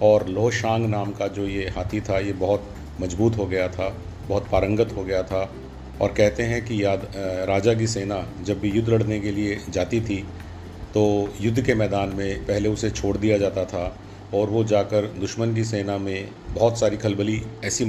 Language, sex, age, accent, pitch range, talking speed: Hindi, male, 40-59, native, 95-105 Hz, 190 wpm